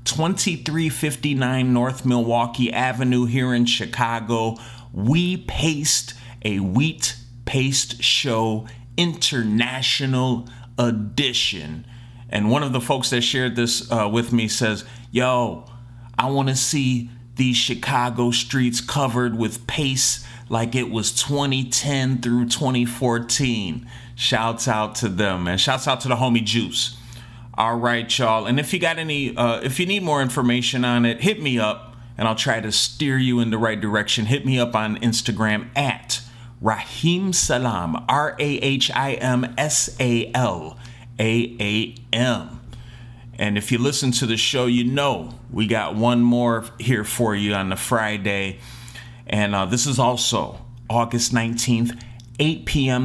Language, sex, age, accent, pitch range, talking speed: English, male, 30-49, American, 115-130 Hz, 150 wpm